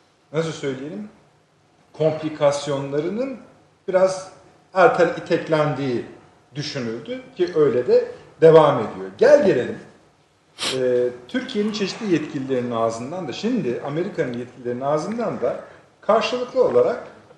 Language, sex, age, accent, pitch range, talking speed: Turkish, male, 50-69, native, 135-180 Hz, 95 wpm